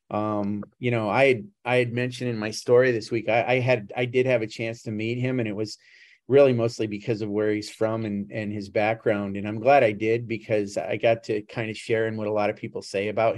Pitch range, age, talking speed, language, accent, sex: 105-120 Hz, 40-59, 255 wpm, English, American, male